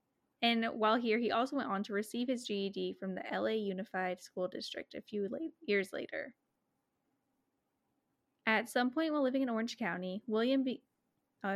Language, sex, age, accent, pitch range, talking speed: English, female, 10-29, American, 195-245 Hz, 160 wpm